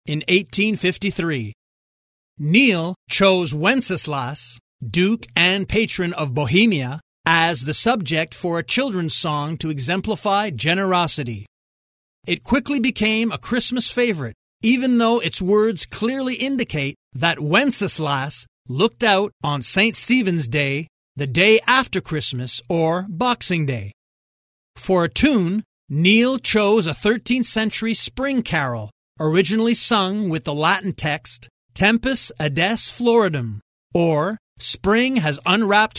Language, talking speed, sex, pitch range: English, 115 wpm, male, 150-215 Hz